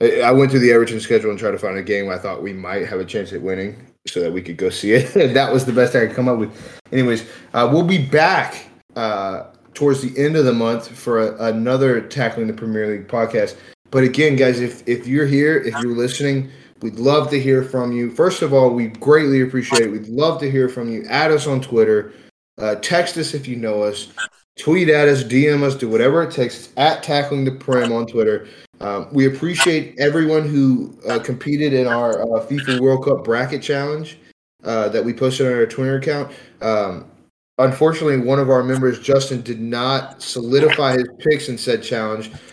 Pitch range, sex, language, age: 115-140 Hz, male, English, 20-39